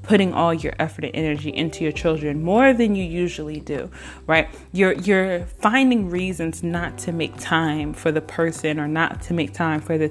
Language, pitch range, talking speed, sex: English, 150-180 Hz, 195 wpm, female